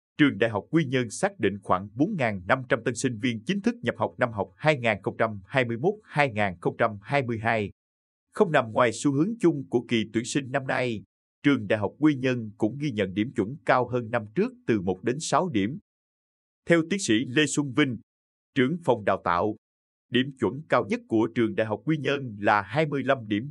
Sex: male